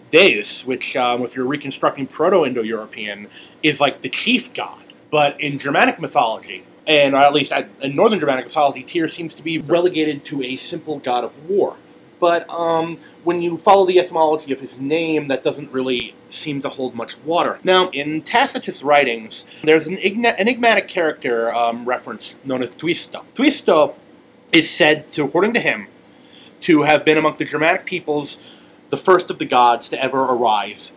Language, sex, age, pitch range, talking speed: English, male, 30-49, 135-180 Hz, 170 wpm